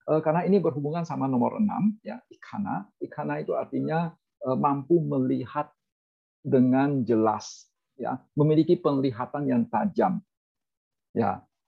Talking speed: 110 wpm